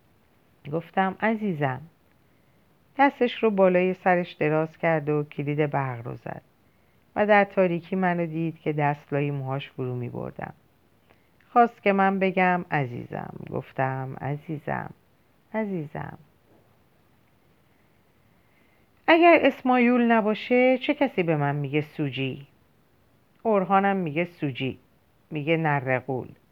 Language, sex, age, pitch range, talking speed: Persian, female, 50-69, 145-210 Hz, 100 wpm